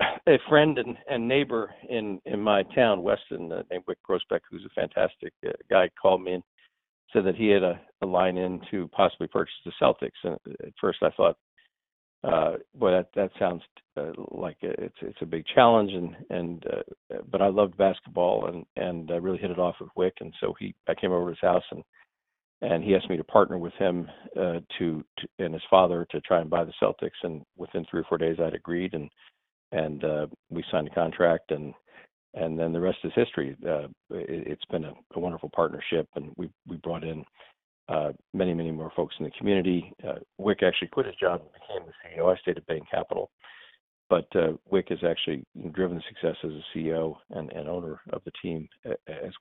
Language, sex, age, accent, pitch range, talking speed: English, male, 50-69, American, 80-100 Hz, 215 wpm